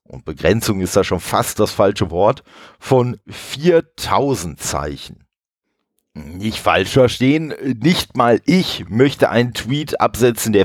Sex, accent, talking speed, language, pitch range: male, German, 130 wpm, German, 105-145 Hz